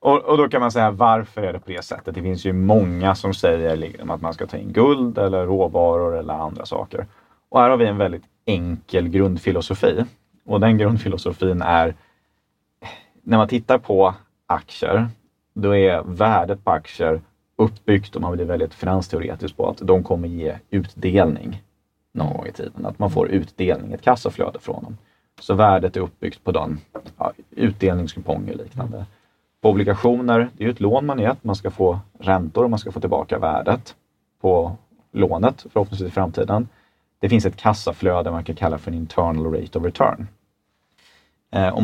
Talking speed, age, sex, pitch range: 175 wpm, 30-49, male, 90-110 Hz